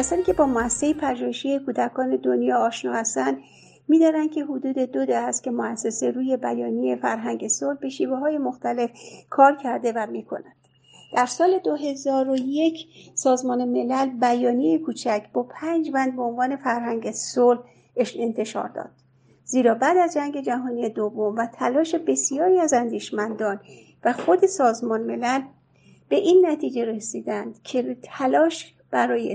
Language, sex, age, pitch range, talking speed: Persian, female, 50-69, 215-290 Hz, 135 wpm